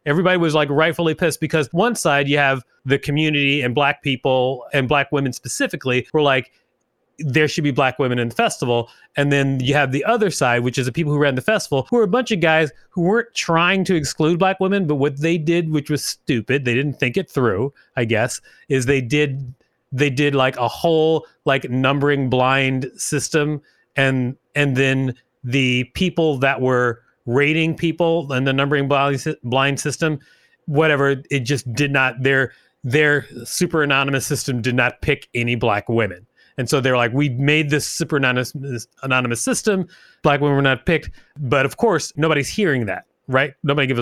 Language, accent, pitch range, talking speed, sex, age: English, American, 130-155 Hz, 190 wpm, male, 30-49